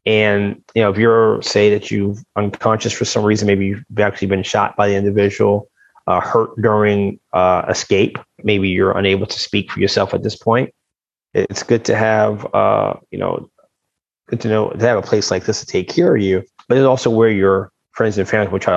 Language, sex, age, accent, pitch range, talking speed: English, male, 30-49, American, 95-110 Hz, 210 wpm